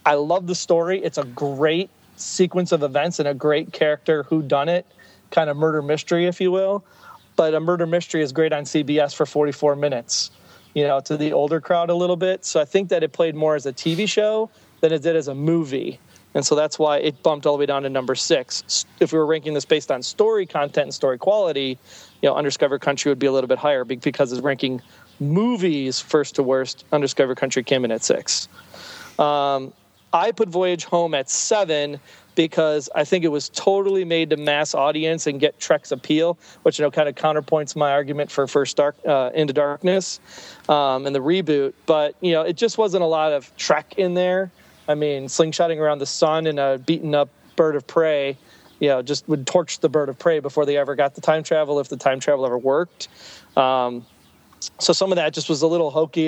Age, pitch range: 30-49, 145-170 Hz